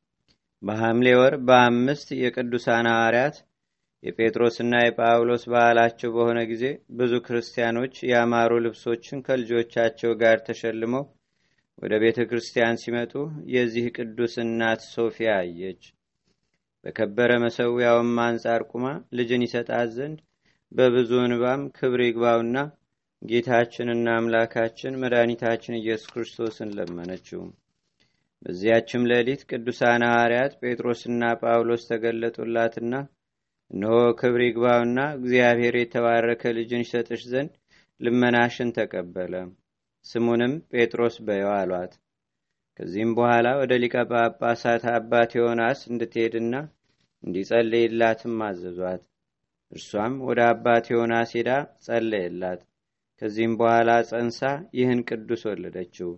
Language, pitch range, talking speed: Amharic, 115-120 Hz, 90 wpm